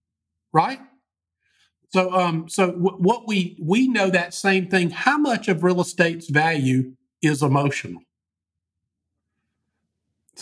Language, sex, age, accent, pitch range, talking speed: English, male, 50-69, American, 150-185 Hz, 120 wpm